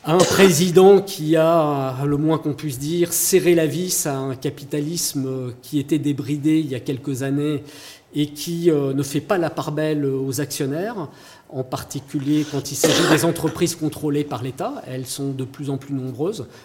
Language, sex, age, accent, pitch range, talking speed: French, male, 40-59, French, 135-155 Hz, 180 wpm